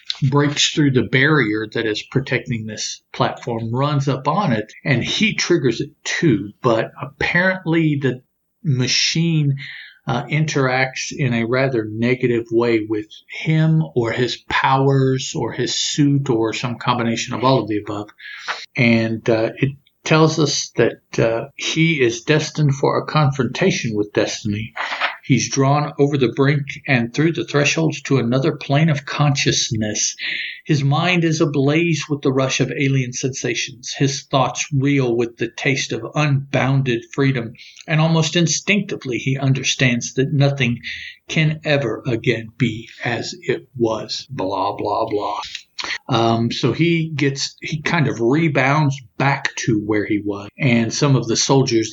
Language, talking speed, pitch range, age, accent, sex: English, 150 wpm, 115-150 Hz, 50-69, American, male